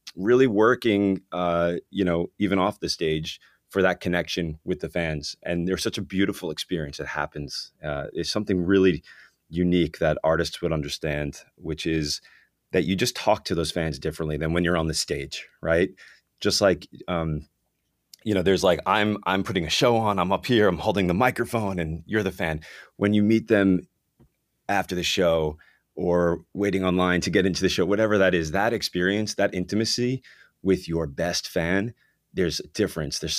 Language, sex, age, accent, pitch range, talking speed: English, male, 30-49, American, 80-95 Hz, 185 wpm